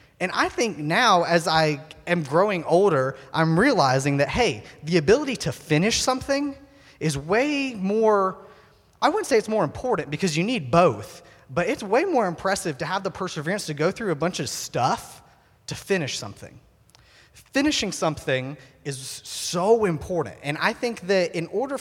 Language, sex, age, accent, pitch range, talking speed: English, male, 30-49, American, 140-200 Hz, 170 wpm